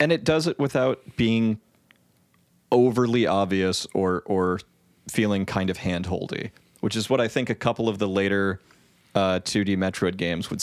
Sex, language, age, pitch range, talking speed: male, English, 30-49, 90-105 Hz, 165 wpm